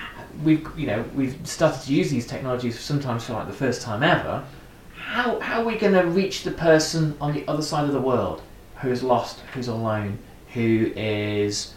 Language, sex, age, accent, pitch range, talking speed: English, male, 30-49, British, 110-145 Hz, 200 wpm